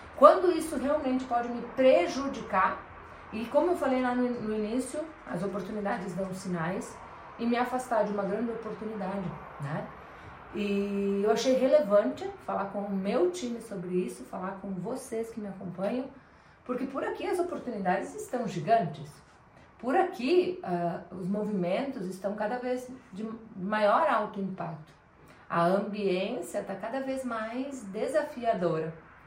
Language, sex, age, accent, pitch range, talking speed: Portuguese, female, 30-49, Brazilian, 185-250 Hz, 140 wpm